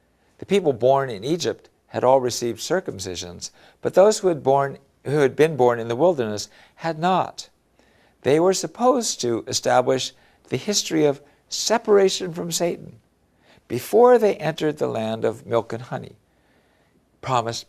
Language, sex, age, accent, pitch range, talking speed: English, male, 60-79, American, 130-175 Hz, 150 wpm